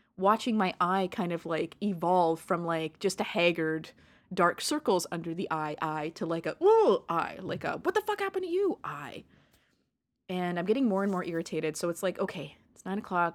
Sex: female